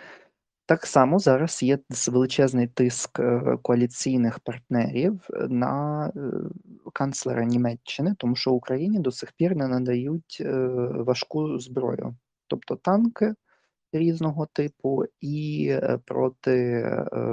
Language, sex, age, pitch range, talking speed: Ukrainian, male, 20-39, 120-150 Hz, 95 wpm